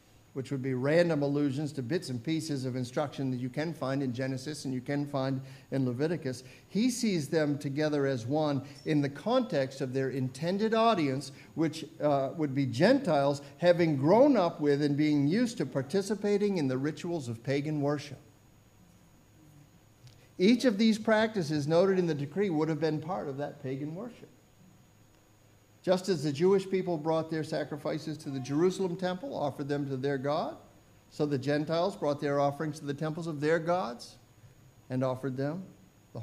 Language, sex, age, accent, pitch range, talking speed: English, male, 50-69, American, 135-175 Hz, 175 wpm